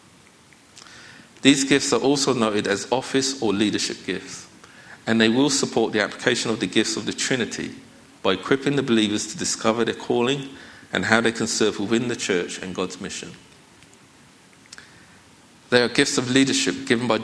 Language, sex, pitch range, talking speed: English, male, 100-130 Hz, 165 wpm